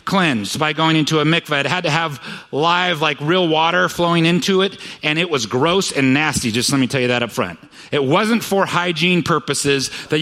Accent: American